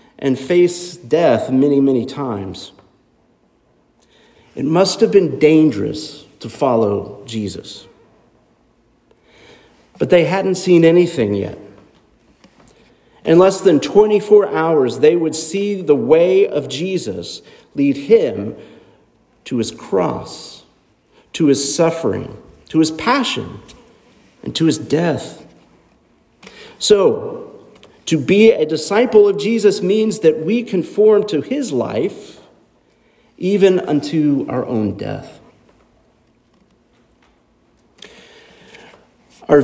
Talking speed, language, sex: 100 wpm, English, male